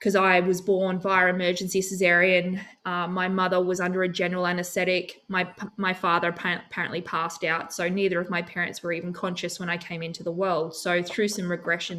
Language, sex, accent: English, female, Australian